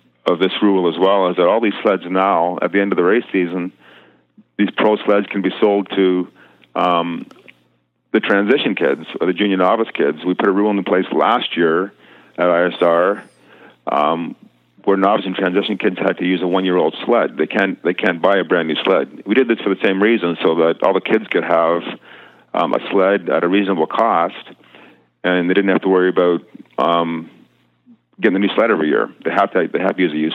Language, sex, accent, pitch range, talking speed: English, male, American, 85-100 Hz, 220 wpm